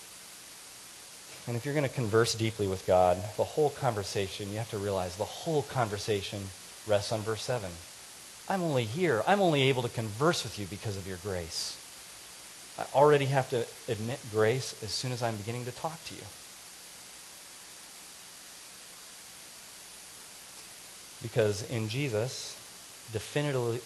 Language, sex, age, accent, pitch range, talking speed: English, male, 30-49, American, 105-130 Hz, 140 wpm